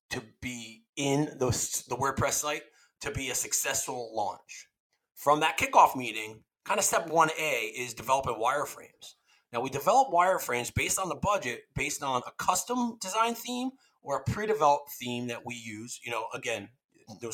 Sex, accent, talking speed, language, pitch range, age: male, American, 170 wpm, English, 130-180 Hz, 30-49